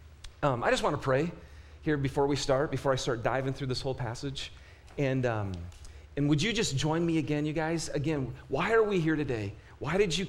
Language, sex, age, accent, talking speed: English, male, 40-59, American, 220 wpm